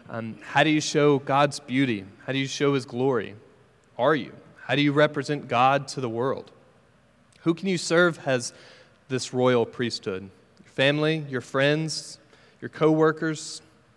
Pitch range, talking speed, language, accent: 120-145 Hz, 160 wpm, English, American